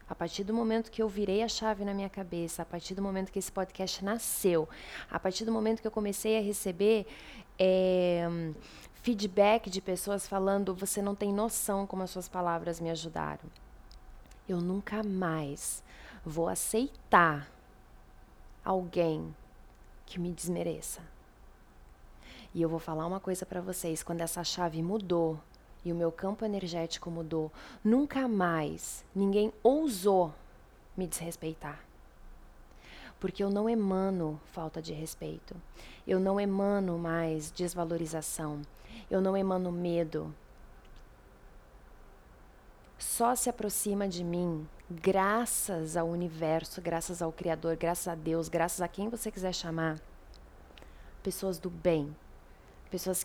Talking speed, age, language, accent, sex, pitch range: 130 wpm, 20-39, Portuguese, Brazilian, female, 165-200 Hz